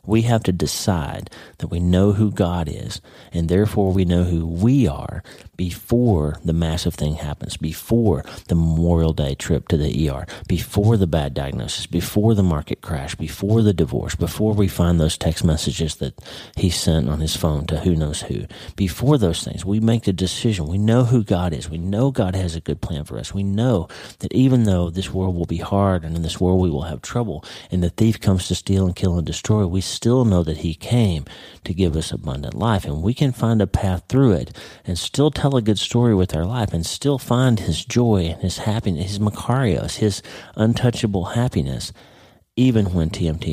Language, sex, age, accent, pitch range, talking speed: English, male, 40-59, American, 80-110 Hz, 210 wpm